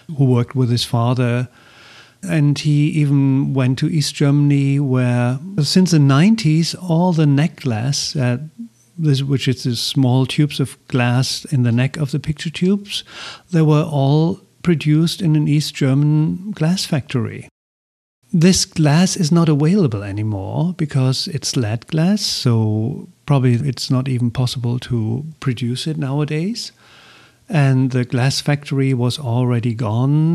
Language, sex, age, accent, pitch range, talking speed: English, male, 50-69, German, 125-155 Hz, 140 wpm